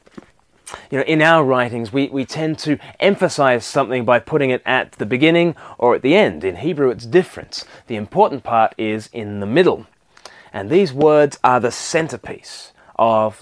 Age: 30-49